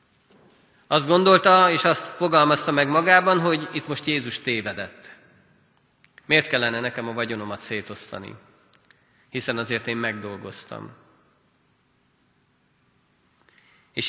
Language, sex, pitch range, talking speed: Hungarian, male, 120-165 Hz, 100 wpm